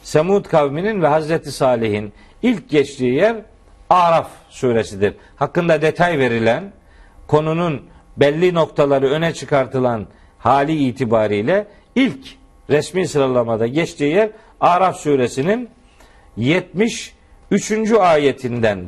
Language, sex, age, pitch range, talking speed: Turkish, male, 50-69, 115-190 Hz, 90 wpm